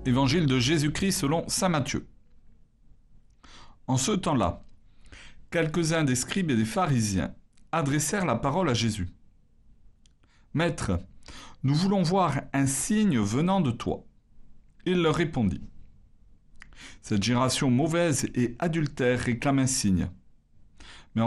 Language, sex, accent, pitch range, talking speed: French, male, French, 110-160 Hz, 115 wpm